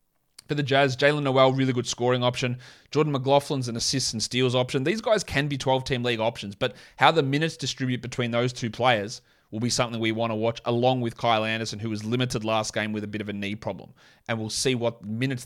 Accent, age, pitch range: Australian, 20-39, 115-140 Hz